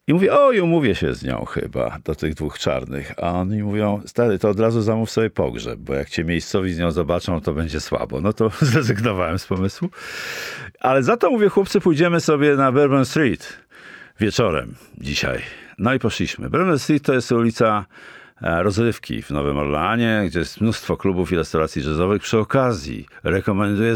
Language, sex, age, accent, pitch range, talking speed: Polish, male, 50-69, native, 85-125 Hz, 180 wpm